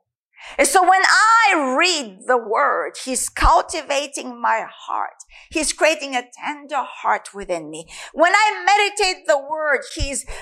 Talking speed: 140 wpm